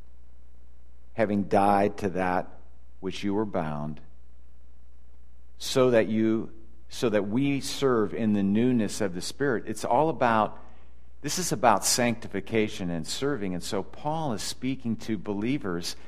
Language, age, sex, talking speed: English, 50-69, male, 140 wpm